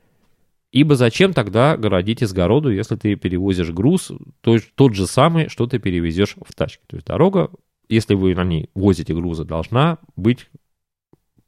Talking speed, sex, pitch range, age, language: 145 wpm, male, 95-140 Hz, 30-49, Russian